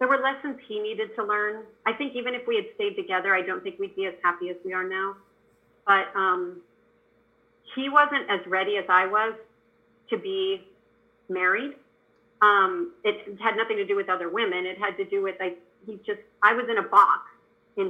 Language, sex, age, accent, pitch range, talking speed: English, female, 40-59, American, 190-275 Hz, 205 wpm